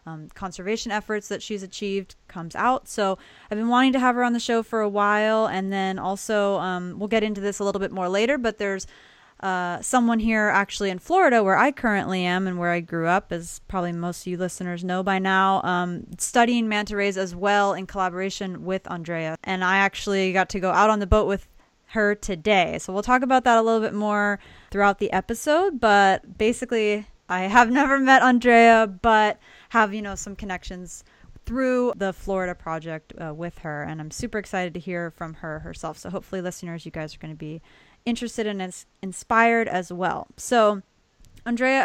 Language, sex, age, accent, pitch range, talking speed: English, female, 20-39, American, 185-225 Hz, 200 wpm